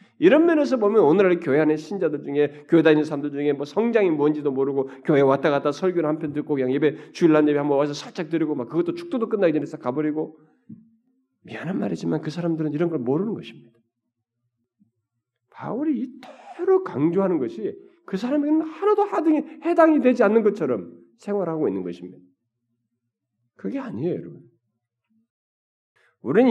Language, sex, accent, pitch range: Korean, male, native, 135-205 Hz